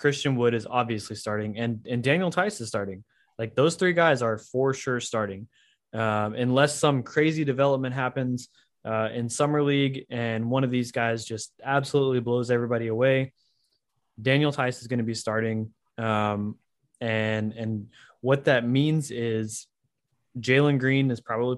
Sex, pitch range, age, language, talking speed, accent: male, 110-135 Hz, 20-39, English, 160 wpm, American